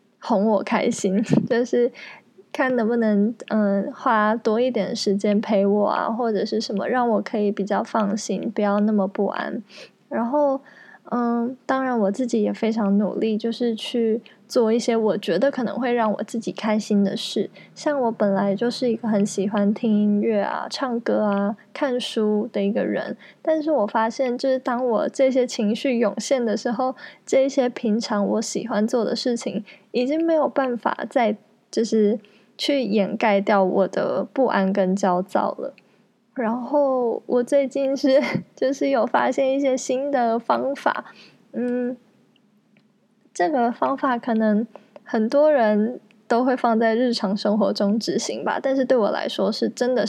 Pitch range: 210-250 Hz